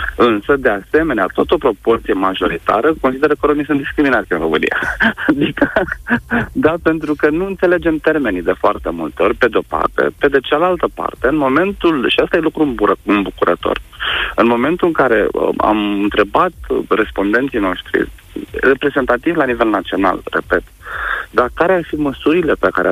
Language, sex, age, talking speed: Romanian, male, 30-49, 155 wpm